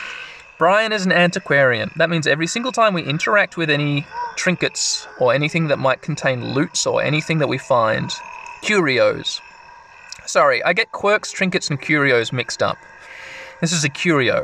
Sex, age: male, 20-39